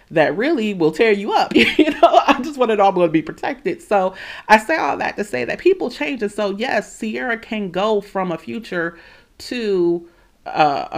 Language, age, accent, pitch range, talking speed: English, 40-59, American, 165-255 Hz, 210 wpm